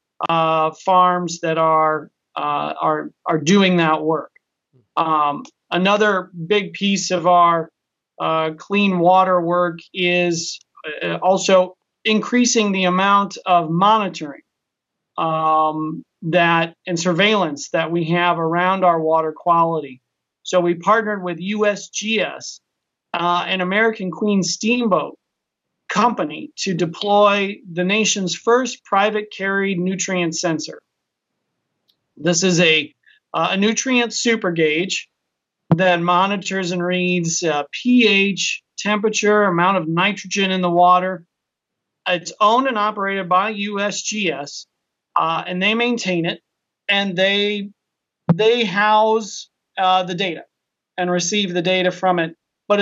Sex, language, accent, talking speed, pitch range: male, English, American, 120 wpm, 170-205 Hz